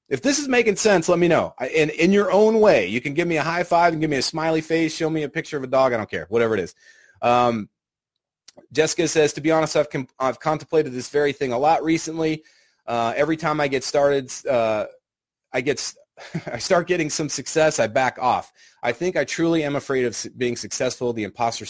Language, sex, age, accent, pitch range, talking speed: English, male, 30-49, American, 120-160 Hz, 220 wpm